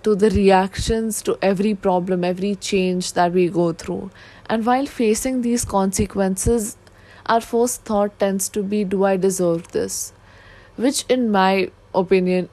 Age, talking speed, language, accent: 20-39, 150 wpm, English, Indian